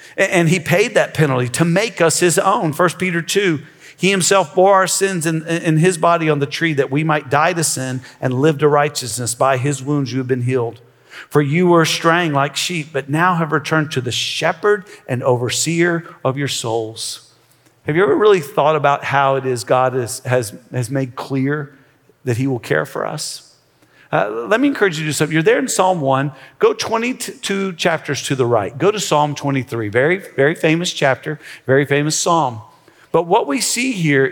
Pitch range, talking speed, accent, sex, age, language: 135-185 Hz, 200 wpm, American, male, 40-59, English